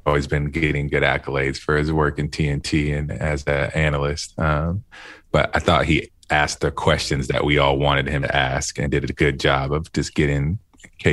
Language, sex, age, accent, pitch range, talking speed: English, male, 20-39, American, 75-85 Hz, 205 wpm